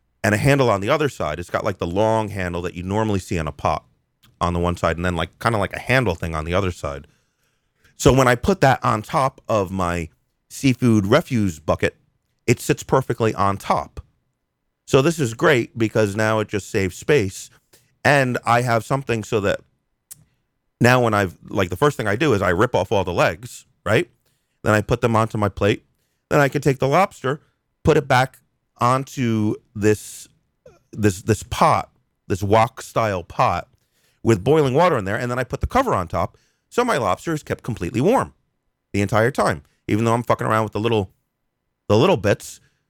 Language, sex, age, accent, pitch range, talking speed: English, male, 30-49, American, 95-125 Hz, 205 wpm